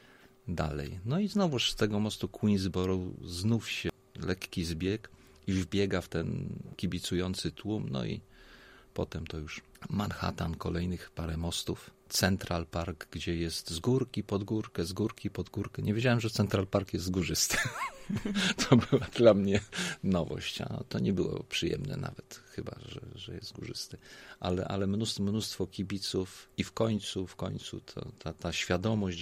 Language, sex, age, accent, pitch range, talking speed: Polish, male, 40-59, native, 90-120 Hz, 150 wpm